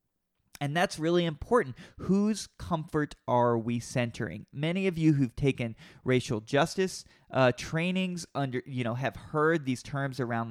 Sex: male